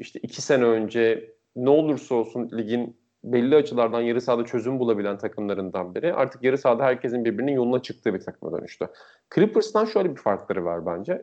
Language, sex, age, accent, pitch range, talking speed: Turkish, male, 40-59, native, 120-160 Hz, 170 wpm